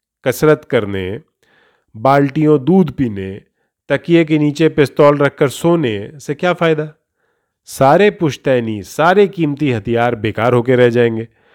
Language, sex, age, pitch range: Urdu, male, 40-59, 130-175 Hz